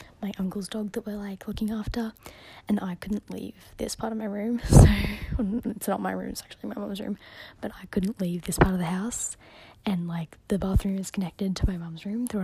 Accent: Australian